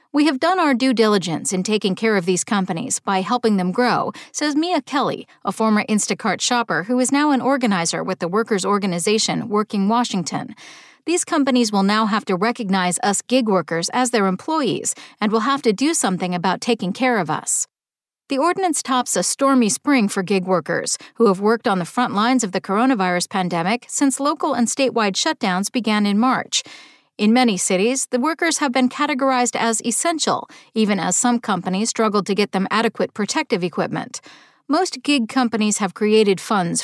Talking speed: 185 wpm